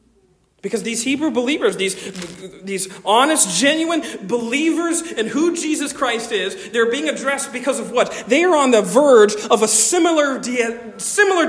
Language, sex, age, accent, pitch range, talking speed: English, male, 40-59, American, 225-315 Hz, 155 wpm